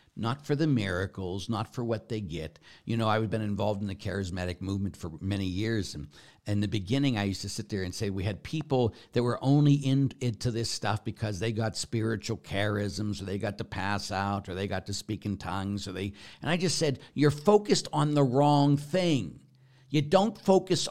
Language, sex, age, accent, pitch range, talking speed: English, male, 60-79, American, 95-135 Hz, 215 wpm